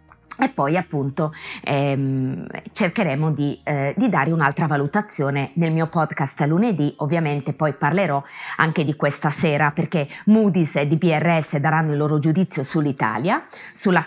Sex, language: female, Italian